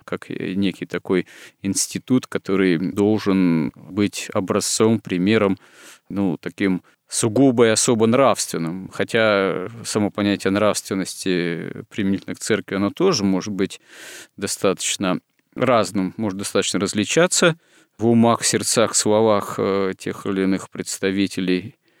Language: Russian